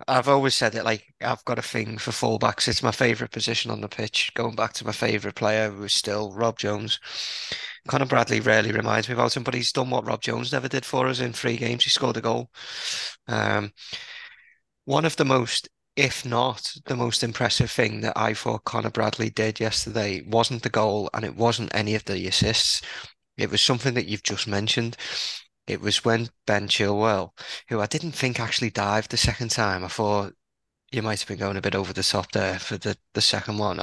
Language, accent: English, British